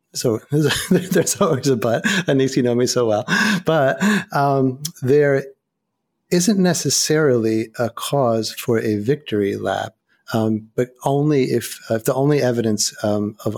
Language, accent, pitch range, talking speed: English, American, 110-130 Hz, 145 wpm